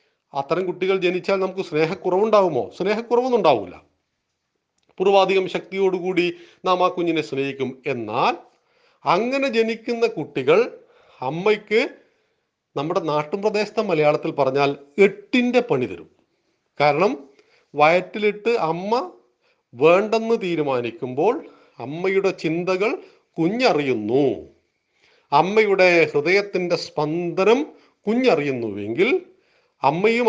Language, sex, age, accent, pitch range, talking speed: Malayalam, male, 40-59, native, 150-225 Hz, 75 wpm